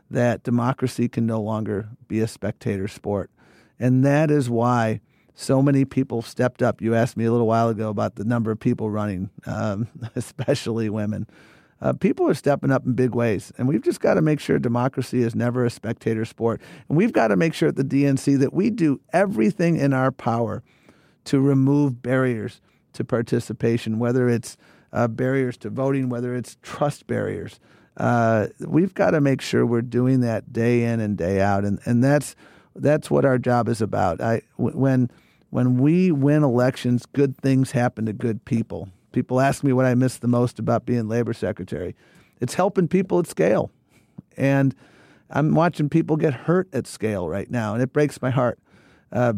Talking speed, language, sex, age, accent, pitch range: 185 wpm, English, male, 50-69, American, 115-135 Hz